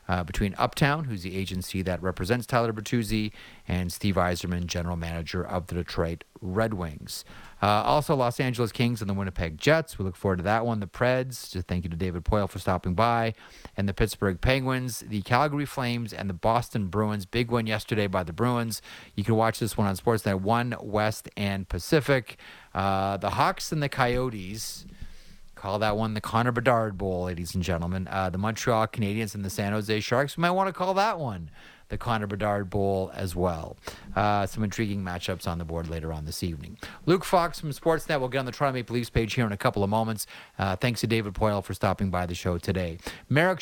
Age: 30-49